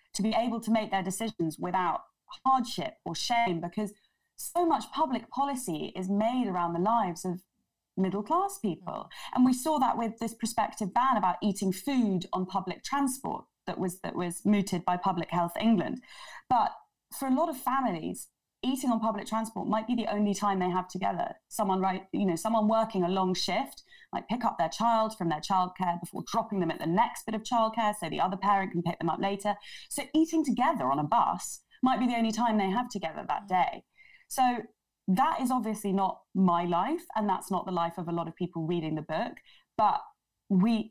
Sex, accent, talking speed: female, British, 205 wpm